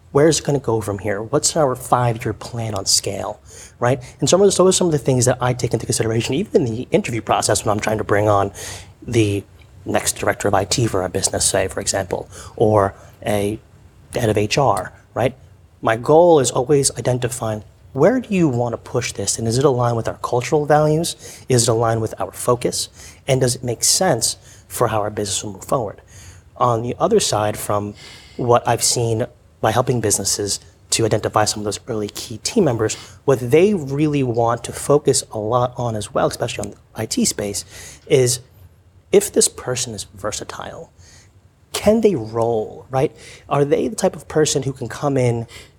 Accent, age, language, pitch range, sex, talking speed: American, 30-49, English, 105-130 Hz, male, 195 wpm